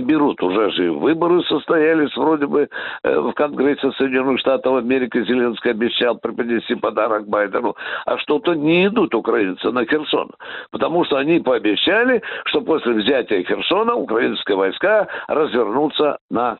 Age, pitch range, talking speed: 60-79, 130-200 Hz, 135 wpm